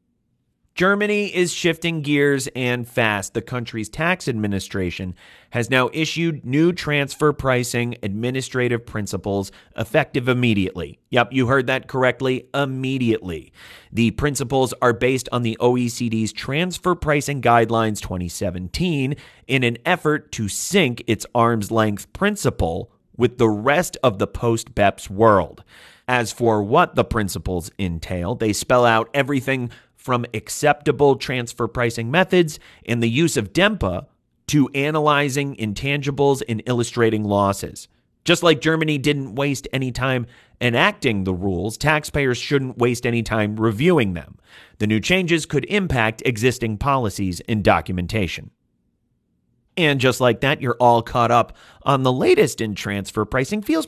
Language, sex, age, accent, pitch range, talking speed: English, male, 30-49, American, 110-145 Hz, 135 wpm